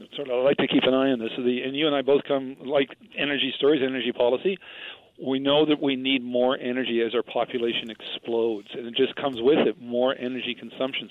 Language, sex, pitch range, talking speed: English, male, 125-145 Hz, 210 wpm